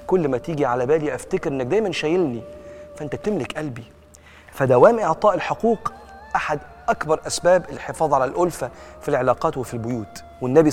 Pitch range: 115-160 Hz